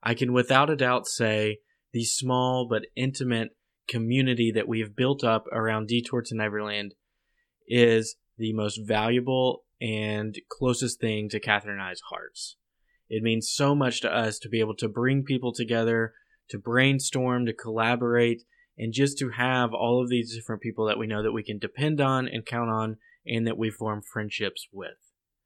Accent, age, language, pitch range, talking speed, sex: American, 20-39, English, 110-130 Hz, 175 wpm, male